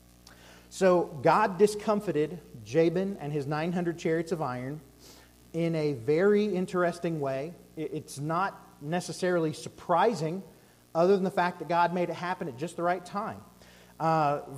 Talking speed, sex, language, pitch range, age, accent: 140 wpm, male, English, 155-200 Hz, 40-59, American